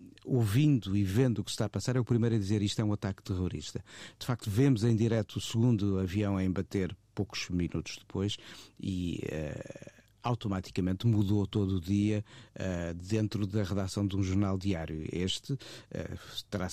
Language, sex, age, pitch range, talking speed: Portuguese, male, 50-69, 105-120 Hz, 180 wpm